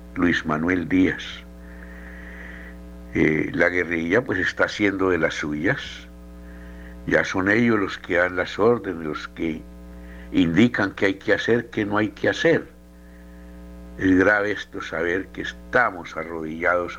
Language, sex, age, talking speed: Spanish, male, 60-79, 140 wpm